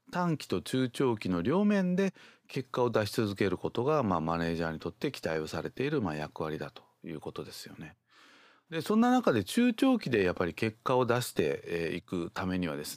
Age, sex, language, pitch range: 40-59, male, Japanese, 90-135 Hz